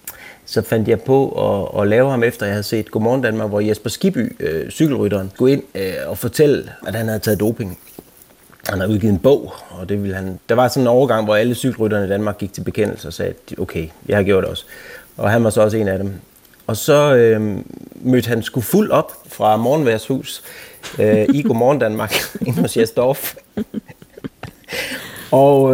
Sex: male